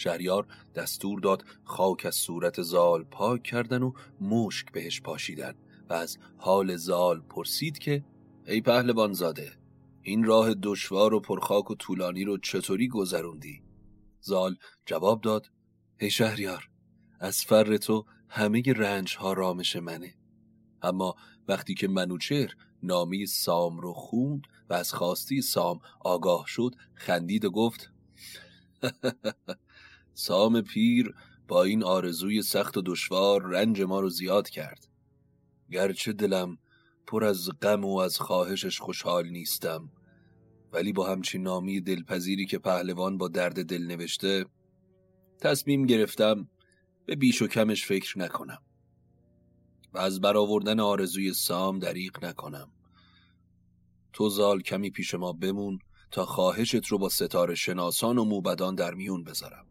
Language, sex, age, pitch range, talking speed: Persian, male, 30-49, 90-110 Hz, 130 wpm